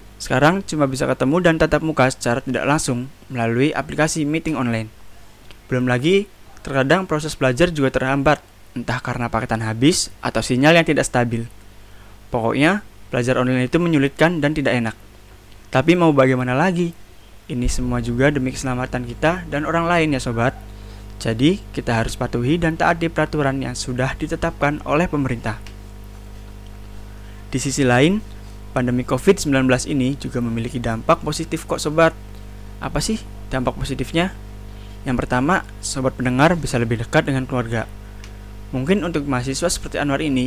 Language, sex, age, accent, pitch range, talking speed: Indonesian, male, 20-39, native, 110-150 Hz, 140 wpm